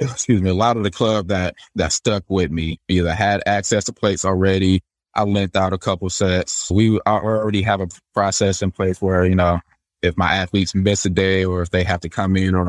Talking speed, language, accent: 230 wpm, English, American